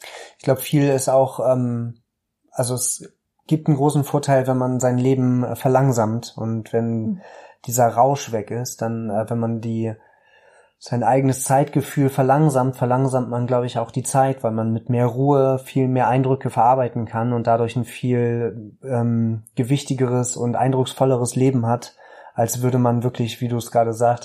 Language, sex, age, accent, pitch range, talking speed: German, male, 30-49, German, 115-130 Hz, 170 wpm